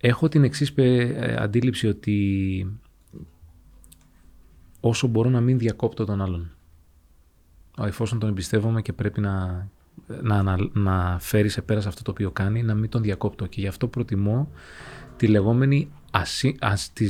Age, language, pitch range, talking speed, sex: 20-39, Greek, 95-120 Hz, 125 wpm, male